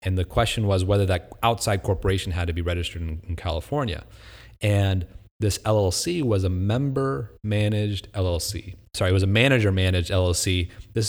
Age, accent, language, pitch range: 30-49, American, English, 90-105 Hz